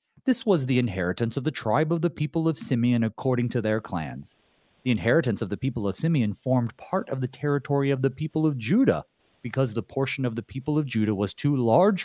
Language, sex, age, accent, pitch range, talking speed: English, male, 40-59, American, 115-160 Hz, 220 wpm